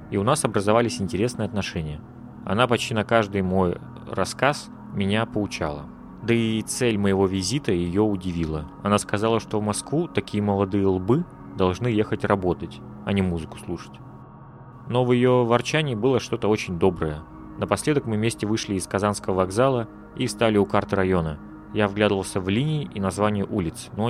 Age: 30-49